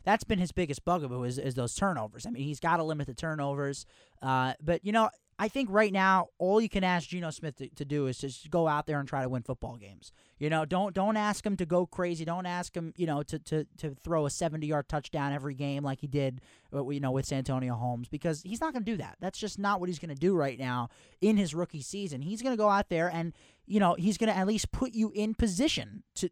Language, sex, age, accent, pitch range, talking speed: English, male, 20-39, American, 140-190 Hz, 265 wpm